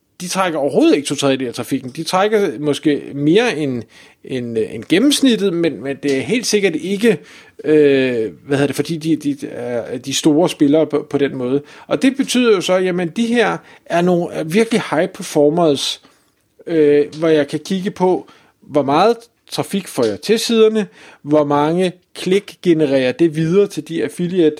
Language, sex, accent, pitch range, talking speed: Danish, male, native, 150-205 Hz, 180 wpm